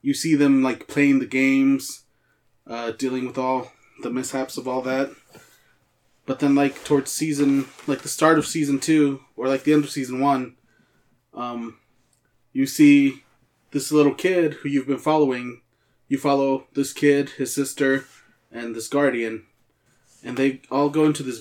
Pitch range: 120-145 Hz